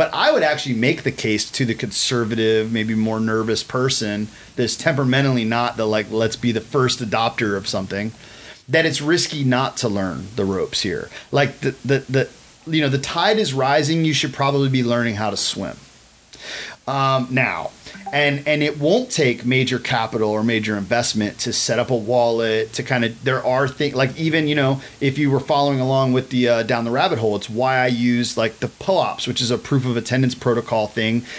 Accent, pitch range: American, 120-140 Hz